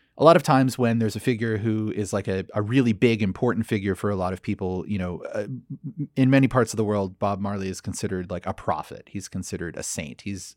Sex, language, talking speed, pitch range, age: male, English, 245 wpm, 100-125 Hz, 30-49